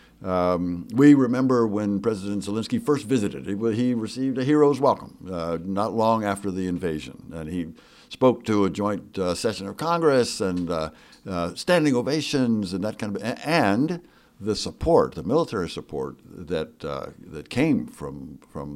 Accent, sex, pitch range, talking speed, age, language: American, male, 95-135 Hz, 165 wpm, 60-79, English